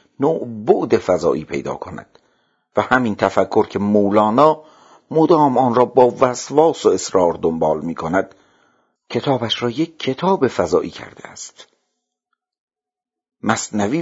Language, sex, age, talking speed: Persian, male, 50-69, 120 wpm